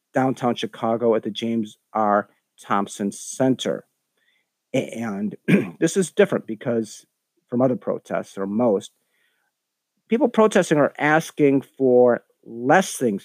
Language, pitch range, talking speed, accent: English, 110-135 Hz, 115 wpm, American